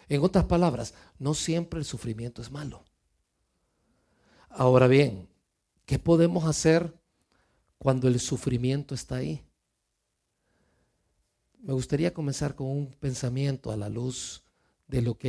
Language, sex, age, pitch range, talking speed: Spanish, male, 50-69, 125-160 Hz, 120 wpm